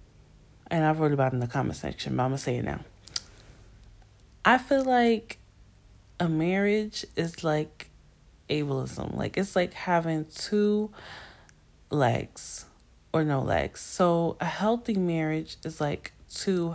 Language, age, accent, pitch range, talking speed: English, 10-29, American, 145-195 Hz, 145 wpm